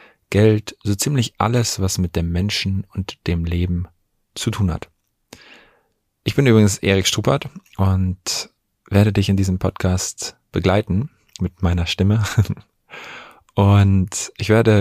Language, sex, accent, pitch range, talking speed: German, male, German, 95-110 Hz, 130 wpm